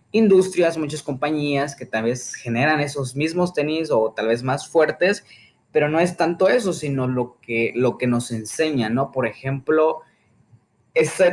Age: 20-39